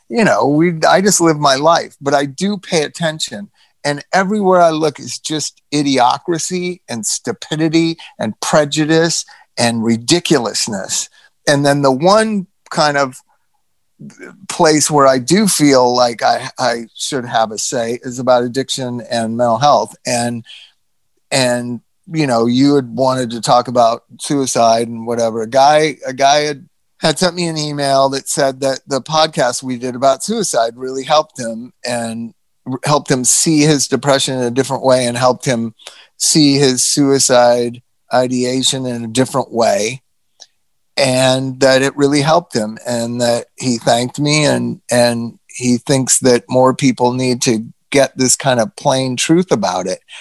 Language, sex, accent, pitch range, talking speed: English, male, American, 120-155 Hz, 160 wpm